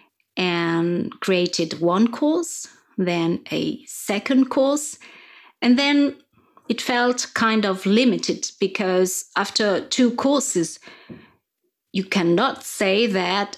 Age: 30-49